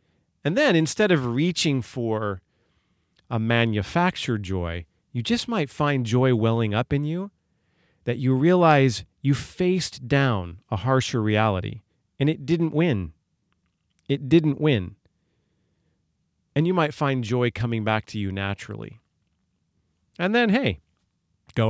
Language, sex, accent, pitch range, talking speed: English, male, American, 95-135 Hz, 135 wpm